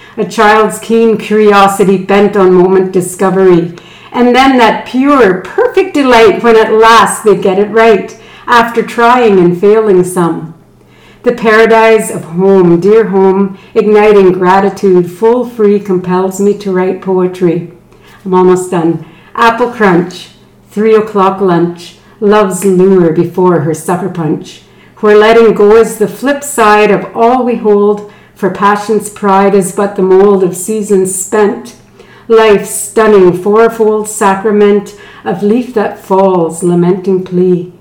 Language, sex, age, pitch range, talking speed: English, female, 60-79, 190-220 Hz, 135 wpm